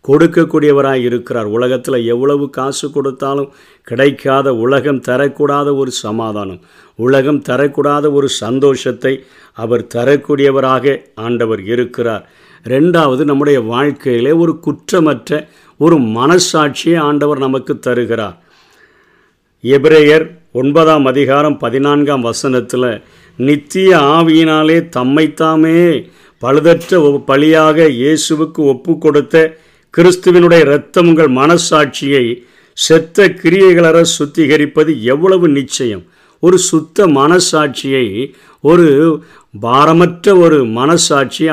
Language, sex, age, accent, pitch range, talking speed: Tamil, male, 50-69, native, 130-155 Hz, 80 wpm